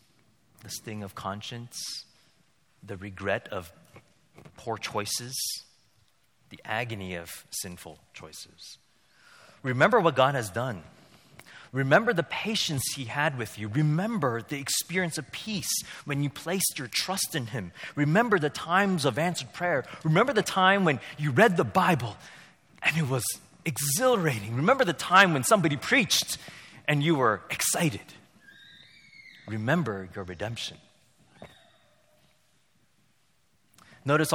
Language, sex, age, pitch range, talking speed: English, male, 30-49, 120-185 Hz, 120 wpm